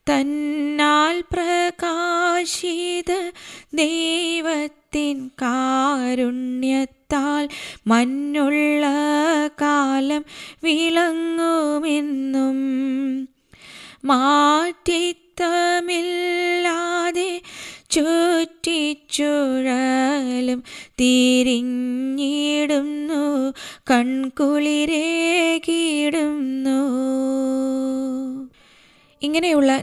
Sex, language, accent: female, Malayalam, native